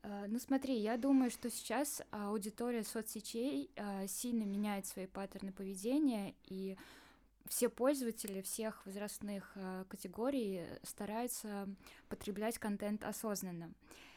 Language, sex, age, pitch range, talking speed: Russian, female, 10-29, 195-230 Hz, 95 wpm